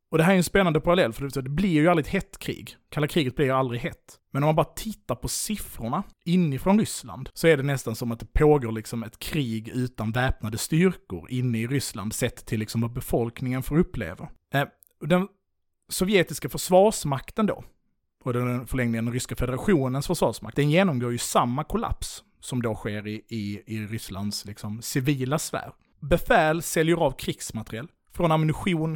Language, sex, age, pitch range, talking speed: Swedish, male, 30-49, 120-160 Hz, 180 wpm